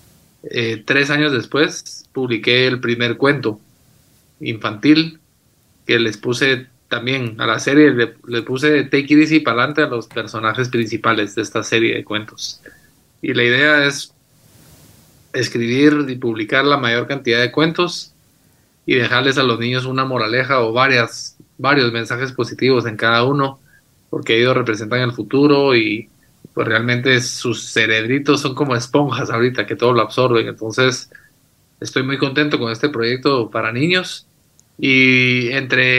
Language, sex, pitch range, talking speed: Spanish, male, 120-140 Hz, 145 wpm